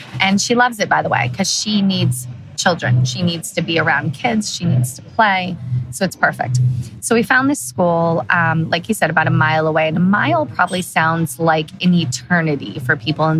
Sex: female